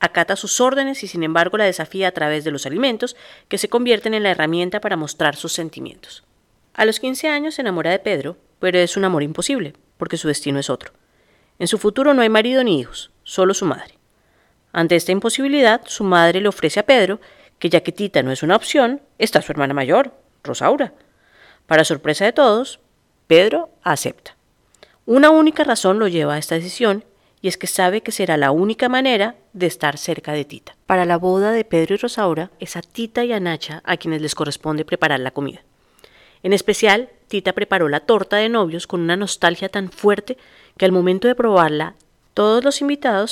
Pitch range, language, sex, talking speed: 165-220 Hz, Spanish, female, 200 wpm